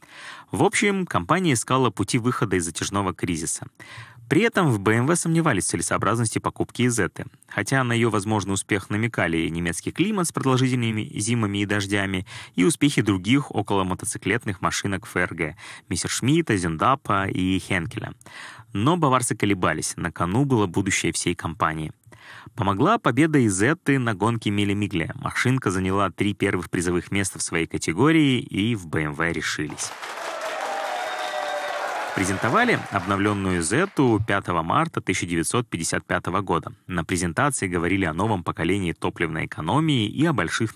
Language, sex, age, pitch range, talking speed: Russian, male, 20-39, 95-130 Hz, 135 wpm